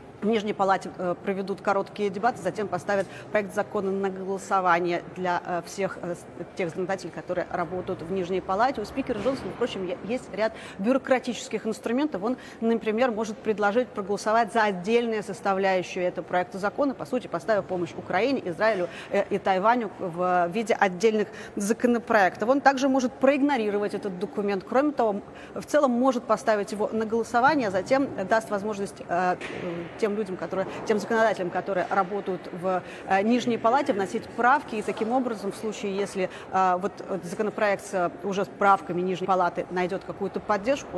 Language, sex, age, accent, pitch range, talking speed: Russian, female, 30-49, native, 185-225 Hz, 155 wpm